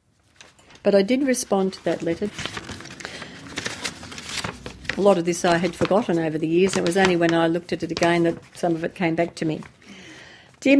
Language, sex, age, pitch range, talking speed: English, female, 50-69, 170-245 Hz, 200 wpm